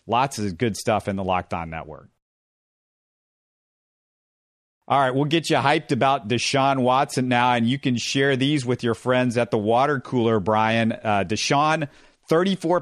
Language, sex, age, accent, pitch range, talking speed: English, male, 40-59, American, 115-145 Hz, 165 wpm